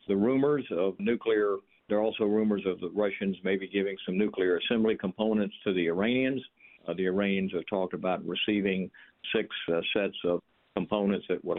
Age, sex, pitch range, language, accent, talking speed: 50-69, male, 95-105 Hz, English, American, 175 wpm